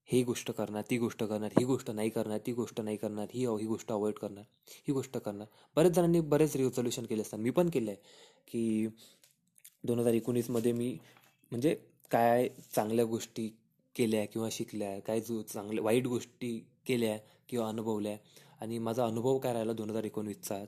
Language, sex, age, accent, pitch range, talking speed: Marathi, male, 20-39, native, 110-140 Hz, 170 wpm